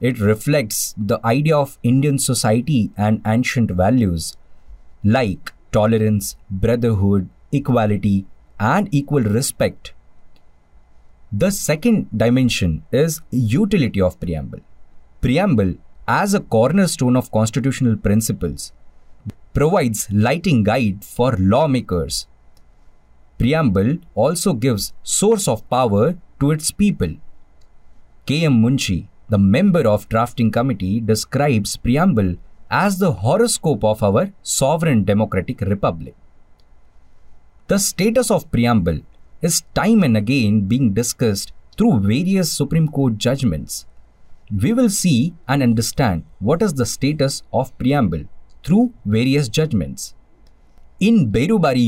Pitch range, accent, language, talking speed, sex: 100-145 Hz, Indian, English, 110 wpm, male